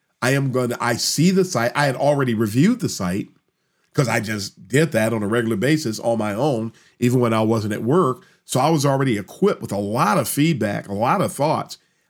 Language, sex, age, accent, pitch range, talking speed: English, male, 50-69, American, 115-145 Hz, 230 wpm